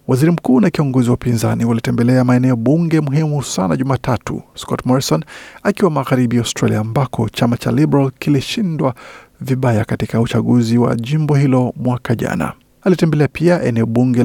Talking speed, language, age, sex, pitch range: 145 wpm, Swahili, 50-69, male, 120-145 Hz